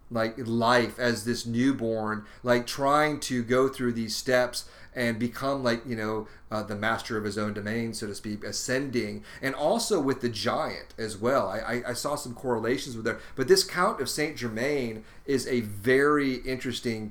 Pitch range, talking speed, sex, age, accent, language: 105-125 Hz, 180 wpm, male, 30-49, American, English